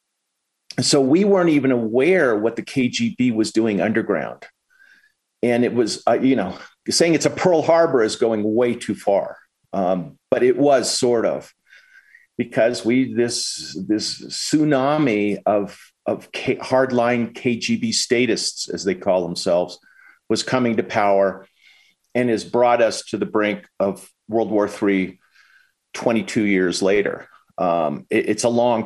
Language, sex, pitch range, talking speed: English, male, 95-125 Hz, 150 wpm